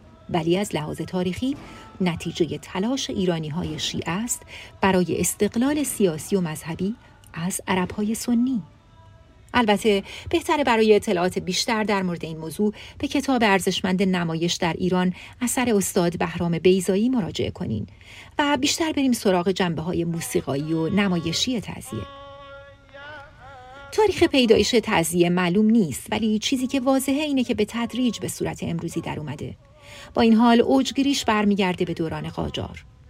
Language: Persian